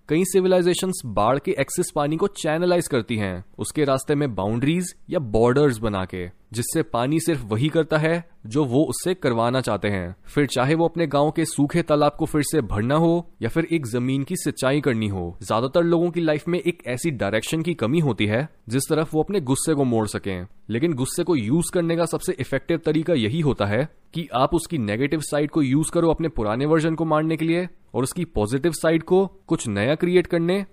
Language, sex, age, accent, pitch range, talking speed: Hindi, male, 20-39, native, 120-170 Hz, 205 wpm